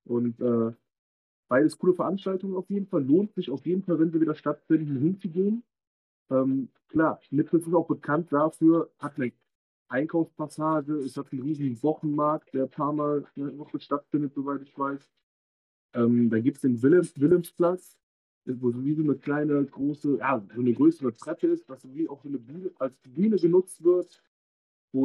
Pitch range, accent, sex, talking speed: 125-165 Hz, German, male, 180 wpm